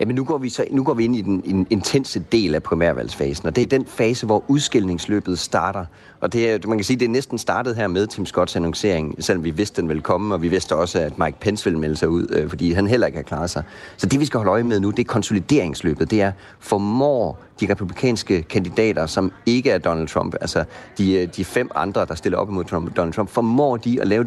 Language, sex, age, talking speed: Danish, male, 30-49, 230 wpm